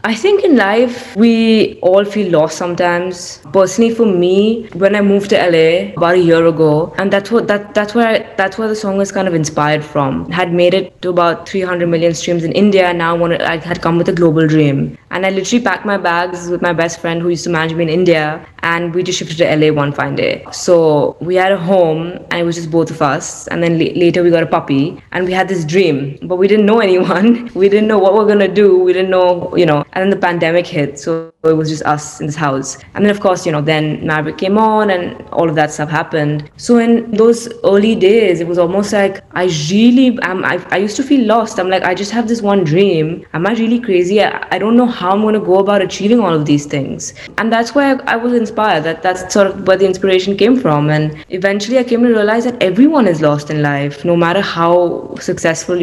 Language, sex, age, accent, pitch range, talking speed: English, female, 20-39, Indian, 165-200 Hz, 250 wpm